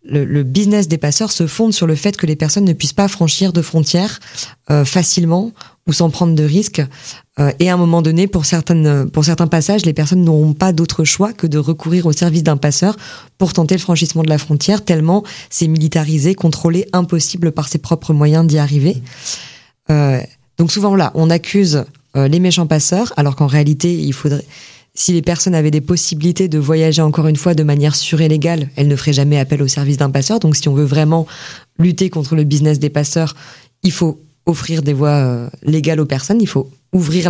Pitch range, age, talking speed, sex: 145-175 Hz, 20-39, 210 wpm, female